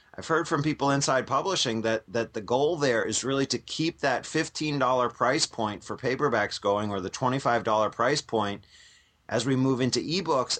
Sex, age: male, 30-49